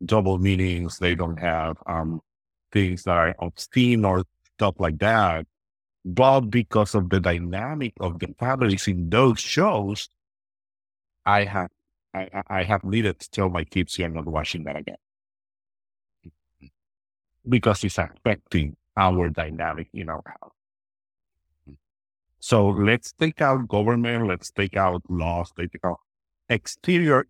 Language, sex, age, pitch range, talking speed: English, male, 50-69, 80-100 Hz, 135 wpm